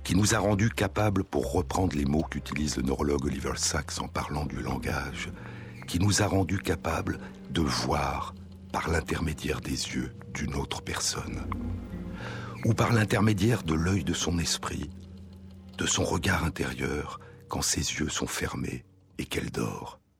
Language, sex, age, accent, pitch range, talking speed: French, male, 60-79, French, 75-95 Hz, 155 wpm